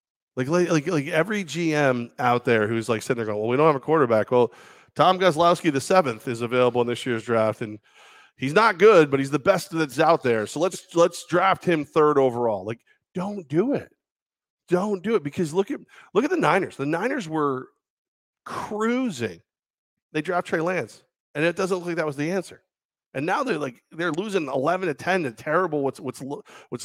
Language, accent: English, American